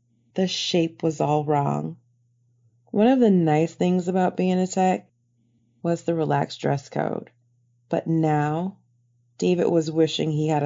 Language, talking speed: English, 145 wpm